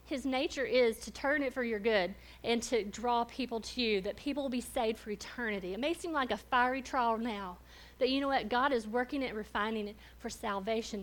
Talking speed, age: 230 wpm, 50-69